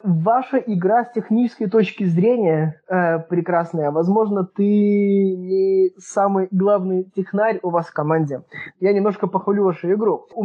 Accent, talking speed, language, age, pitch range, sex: native, 140 wpm, Russian, 20-39, 170-200 Hz, male